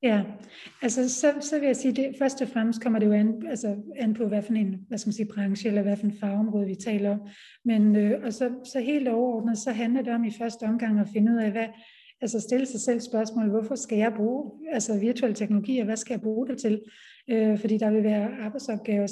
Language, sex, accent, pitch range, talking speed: Danish, female, native, 215-245 Hz, 240 wpm